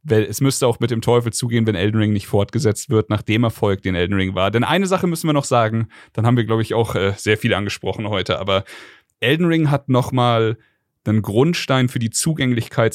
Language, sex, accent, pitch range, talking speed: German, male, German, 110-145 Hz, 225 wpm